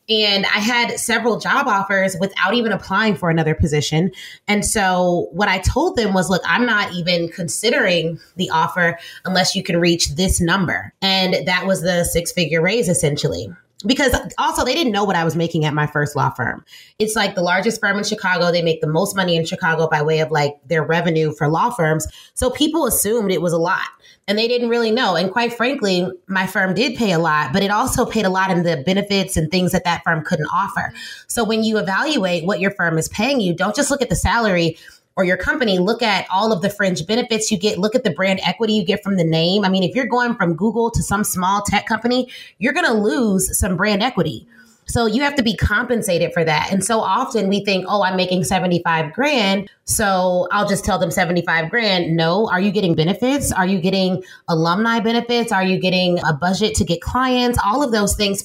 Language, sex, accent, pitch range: English, female, American, 175-220 Hz